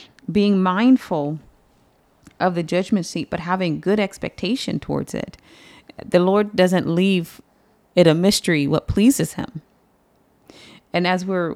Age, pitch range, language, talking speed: 30-49, 155-185 Hz, English, 130 wpm